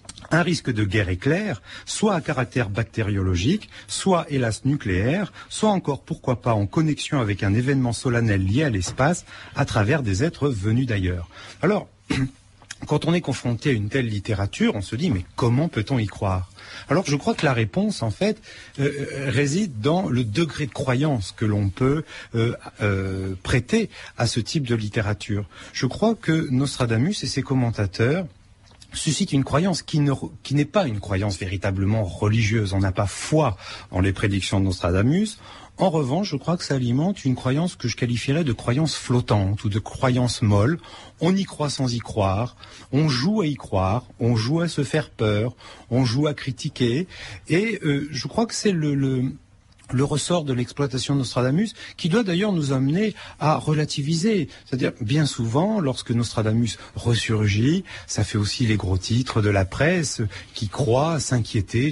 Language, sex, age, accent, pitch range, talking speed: French, male, 40-59, French, 105-150 Hz, 175 wpm